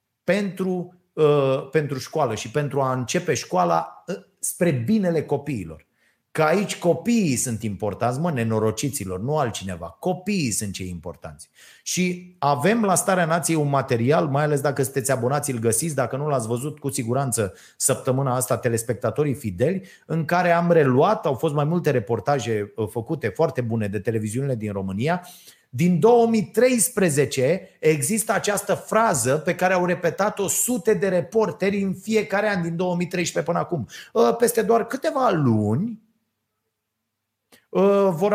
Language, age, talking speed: Romanian, 30-49, 140 wpm